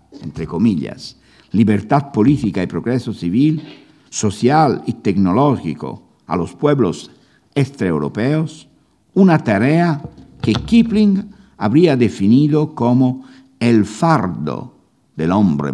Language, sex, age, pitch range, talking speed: Spanish, male, 60-79, 105-155 Hz, 95 wpm